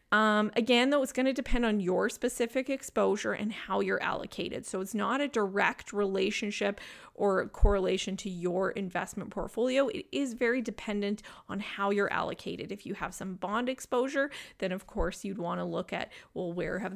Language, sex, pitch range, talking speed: English, female, 190-235 Hz, 185 wpm